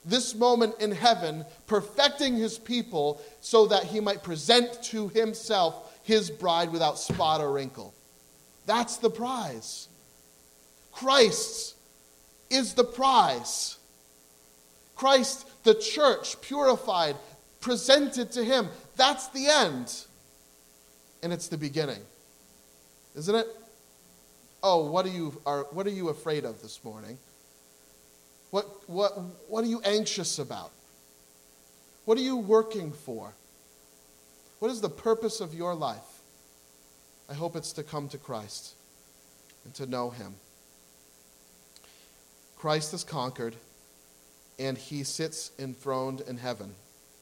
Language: English